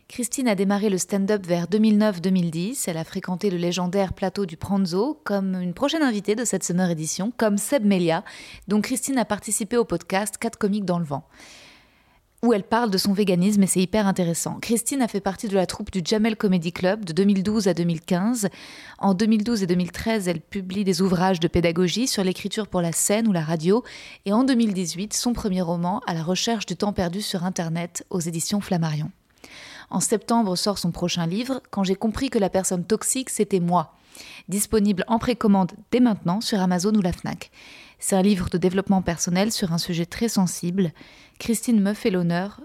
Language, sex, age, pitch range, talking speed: French, female, 20-39, 180-215 Hz, 195 wpm